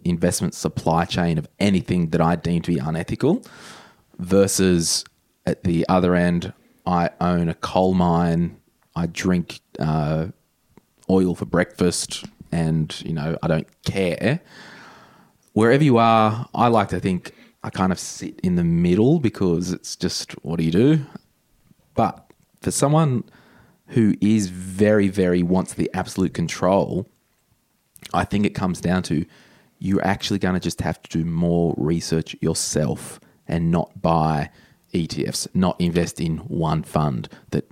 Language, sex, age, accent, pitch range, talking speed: English, male, 20-39, Australian, 85-100 Hz, 145 wpm